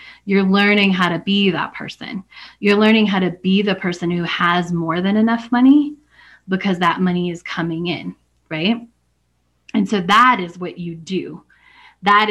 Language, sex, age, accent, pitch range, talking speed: English, female, 20-39, American, 175-210 Hz, 170 wpm